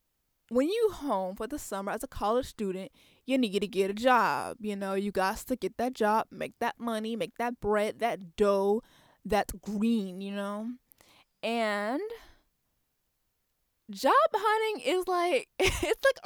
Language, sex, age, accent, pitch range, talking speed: English, female, 20-39, American, 210-275 Hz, 160 wpm